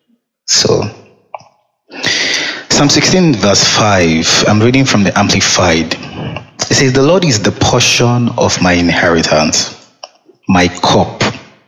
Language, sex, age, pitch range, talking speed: English, male, 30-49, 95-135 Hz, 115 wpm